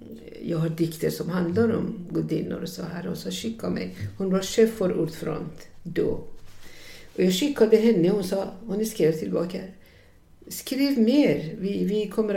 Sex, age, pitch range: female, 60-79, 165-225 Hz